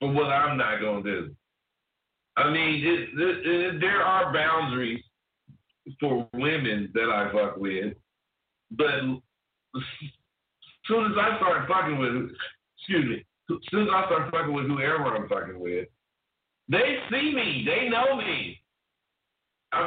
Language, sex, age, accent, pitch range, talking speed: English, male, 60-79, American, 125-175 Hz, 145 wpm